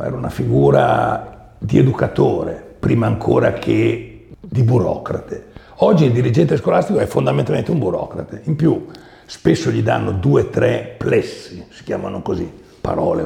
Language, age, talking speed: Italian, 60-79, 140 wpm